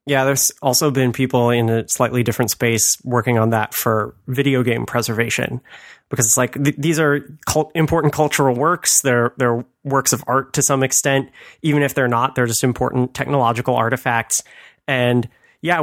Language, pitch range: English, 120-140 Hz